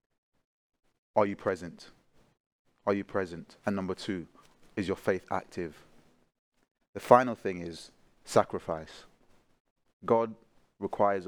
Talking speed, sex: 105 wpm, male